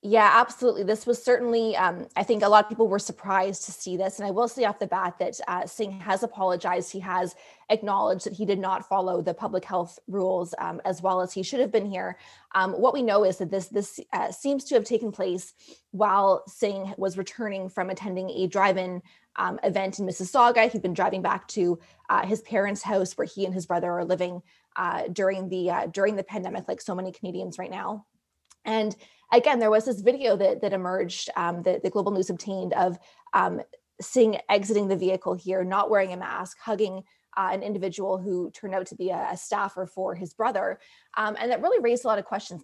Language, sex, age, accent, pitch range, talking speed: English, female, 20-39, American, 185-215 Hz, 220 wpm